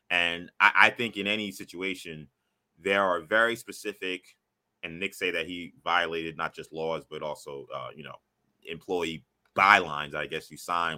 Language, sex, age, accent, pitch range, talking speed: English, male, 20-39, American, 85-120 Hz, 175 wpm